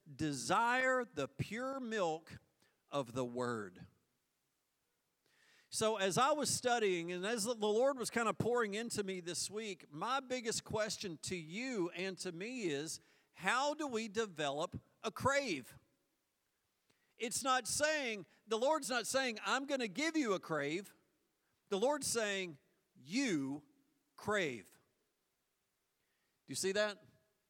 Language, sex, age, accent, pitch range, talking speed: English, male, 50-69, American, 140-220 Hz, 135 wpm